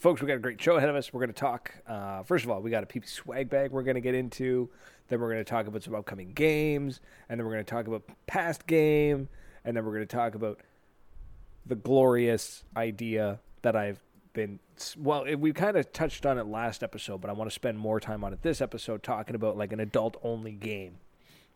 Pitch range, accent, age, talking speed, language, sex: 115-170 Hz, American, 20-39, 240 wpm, English, male